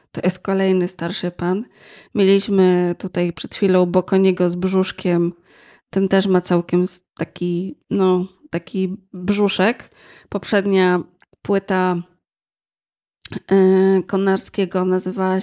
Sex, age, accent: female, 20-39, native